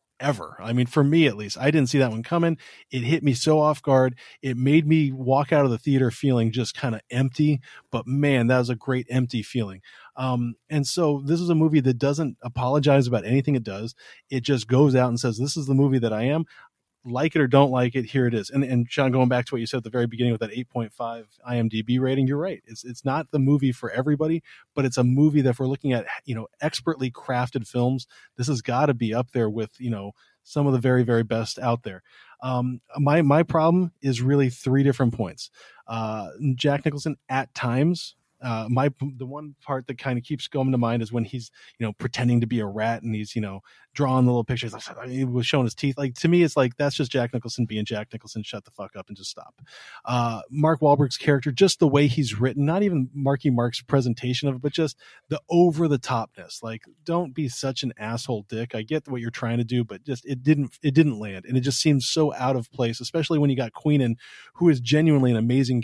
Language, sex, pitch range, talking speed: English, male, 120-145 Hz, 240 wpm